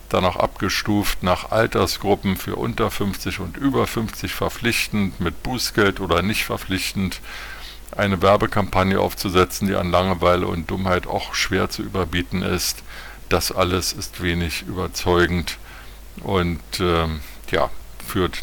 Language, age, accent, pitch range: German, 50-69, German, 85-100 Hz